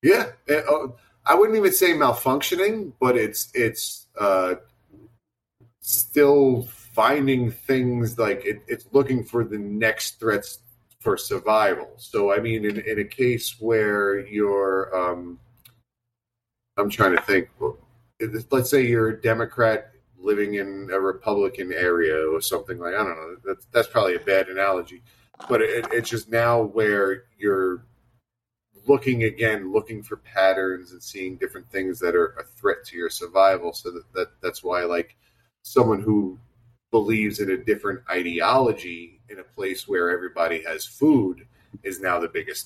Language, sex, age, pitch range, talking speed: English, male, 40-59, 95-120 Hz, 155 wpm